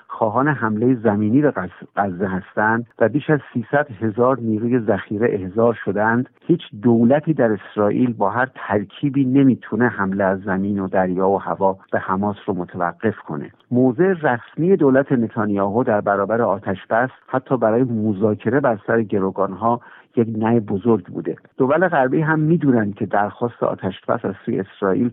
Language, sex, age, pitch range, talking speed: Persian, male, 50-69, 105-130 Hz, 150 wpm